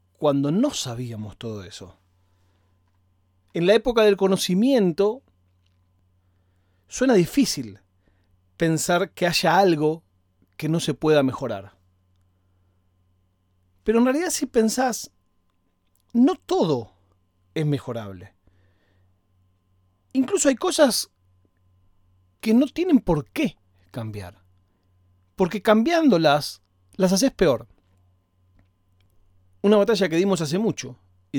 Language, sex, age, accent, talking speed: Spanish, male, 40-59, Argentinian, 100 wpm